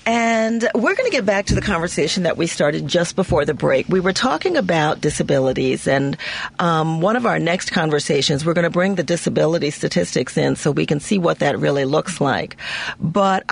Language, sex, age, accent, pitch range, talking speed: English, female, 40-59, American, 165-235 Hz, 205 wpm